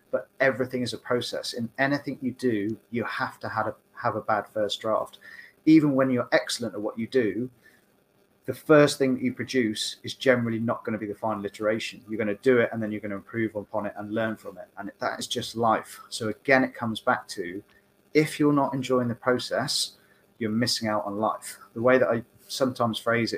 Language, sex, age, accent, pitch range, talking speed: English, male, 30-49, British, 105-130 Hz, 215 wpm